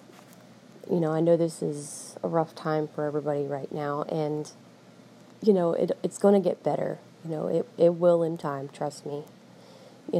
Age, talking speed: 20-39, 190 wpm